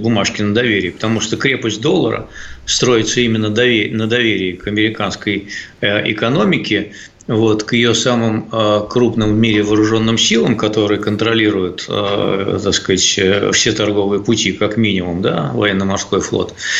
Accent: native